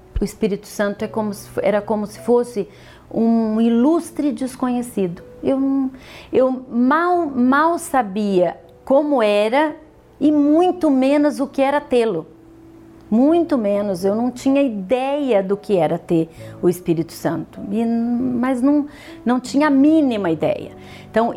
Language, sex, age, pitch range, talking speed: Portuguese, female, 40-59, 195-255 Hz, 125 wpm